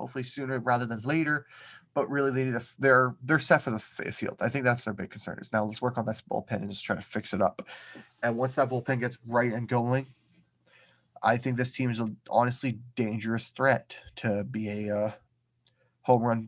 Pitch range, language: 115-150 Hz, English